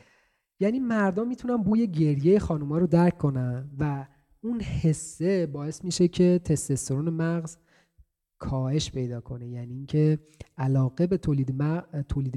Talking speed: 120 wpm